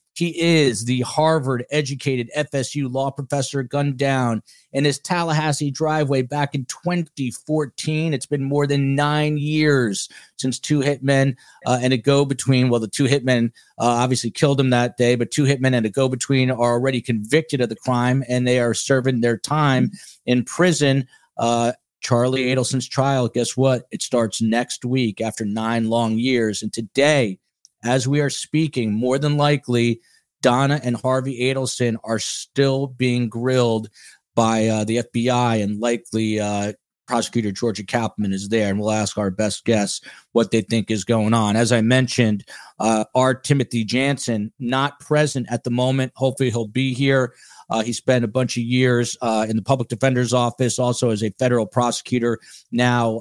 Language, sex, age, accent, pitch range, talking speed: English, male, 40-59, American, 115-135 Hz, 170 wpm